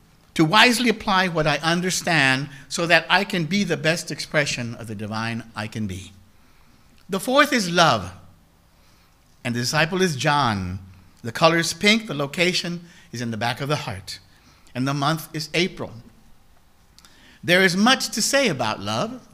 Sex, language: male, English